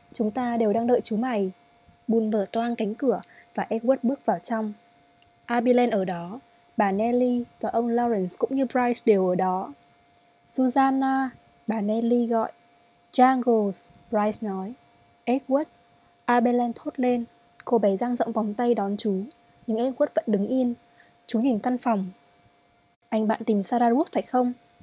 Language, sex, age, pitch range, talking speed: Vietnamese, female, 20-39, 210-245 Hz, 160 wpm